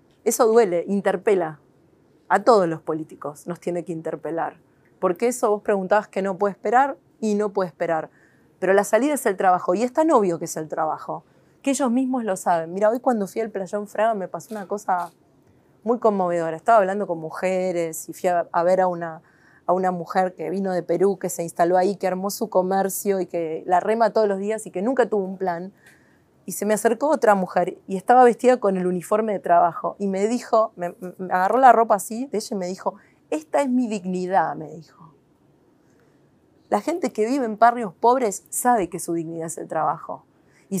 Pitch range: 175-220 Hz